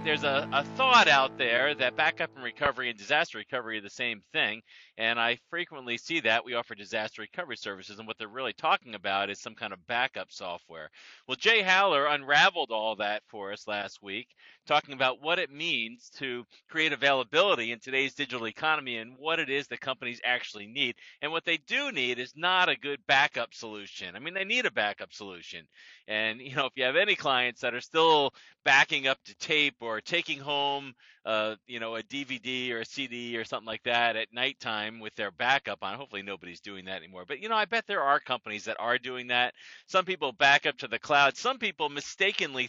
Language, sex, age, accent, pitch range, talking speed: English, male, 40-59, American, 110-150 Hz, 210 wpm